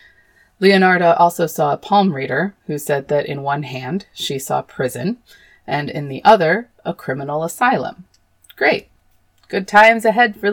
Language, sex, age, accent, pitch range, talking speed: English, female, 30-49, American, 140-200 Hz, 155 wpm